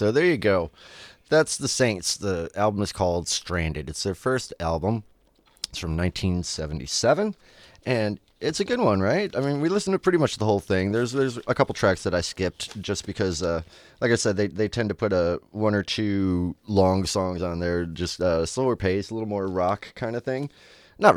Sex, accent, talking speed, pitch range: male, American, 210 wpm, 85-115 Hz